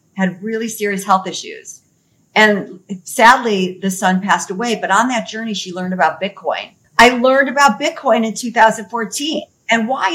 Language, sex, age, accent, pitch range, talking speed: English, female, 50-69, American, 200-300 Hz, 160 wpm